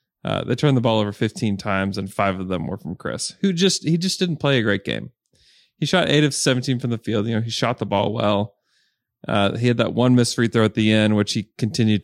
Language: English